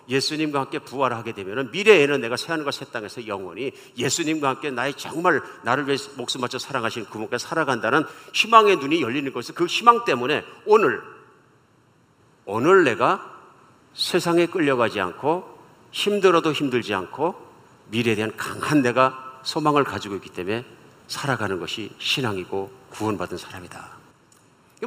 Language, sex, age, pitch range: Korean, male, 50-69, 125-200 Hz